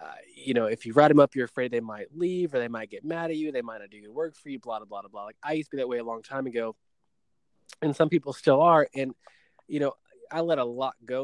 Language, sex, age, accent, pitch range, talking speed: English, male, 20-39, American, 115-135 Hz, 300 wpm